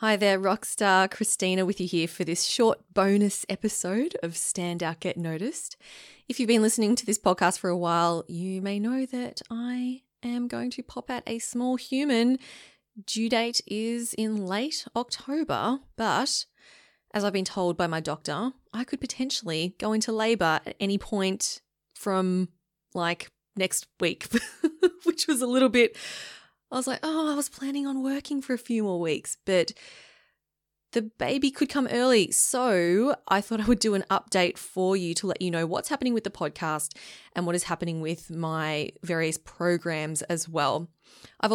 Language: English